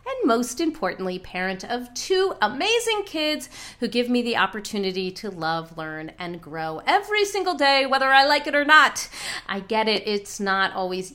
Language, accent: English, American